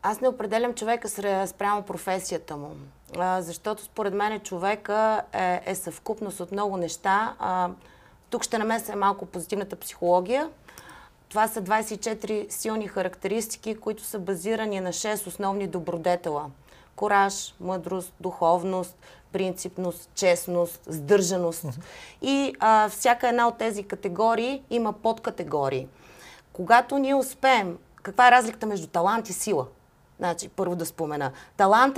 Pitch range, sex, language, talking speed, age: 175-225 Hz, female, Bulgarian, 125 wpm, 30-49